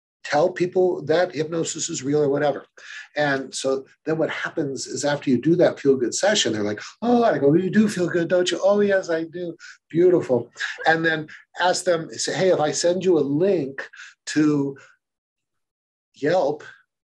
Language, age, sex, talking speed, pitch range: English, 50-69, male, 175 wpm, 135-175 Hz